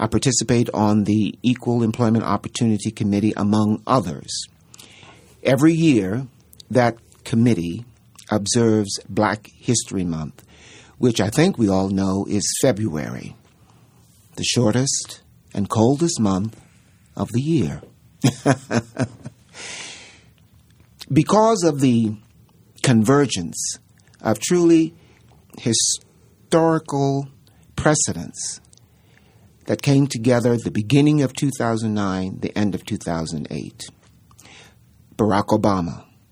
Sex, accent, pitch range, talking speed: male, American, 95-125 Hz, 90 wpm